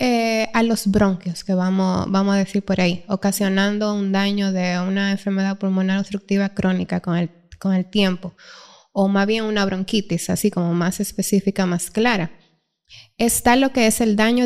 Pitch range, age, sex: 195-240 Hz, 20-39, female